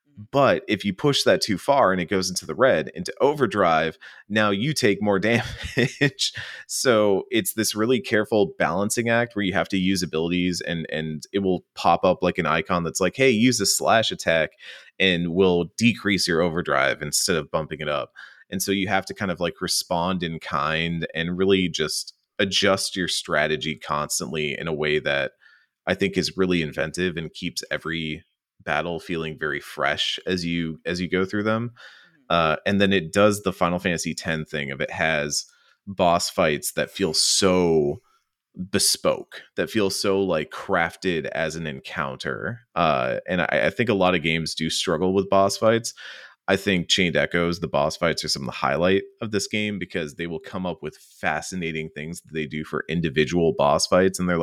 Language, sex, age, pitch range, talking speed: English, male, 30-49, 80-100 Hz, 190 wpm